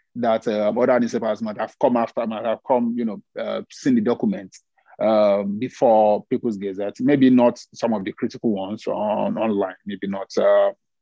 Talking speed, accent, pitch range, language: 180 wpm, Nigerian, 105-140 Hz, English